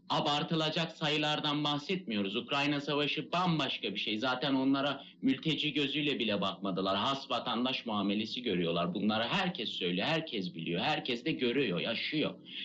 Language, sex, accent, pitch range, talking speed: Turkish, male, native, 110-155 Hz, 130 wpm